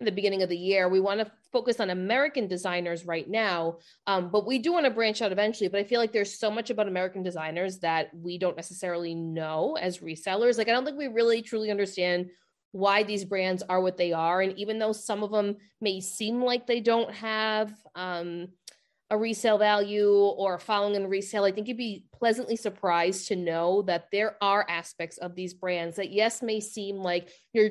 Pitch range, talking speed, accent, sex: 175-215 Hz, 210 wpm, American, female